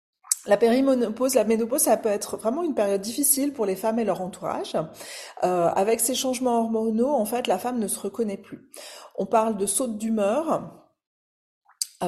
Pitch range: 195-240 Hz